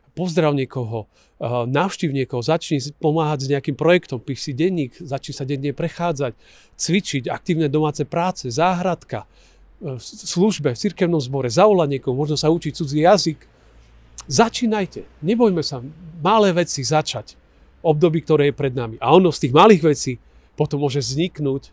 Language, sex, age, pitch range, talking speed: Slovak, male, 40-59, 125-170 Hz, 140 wpm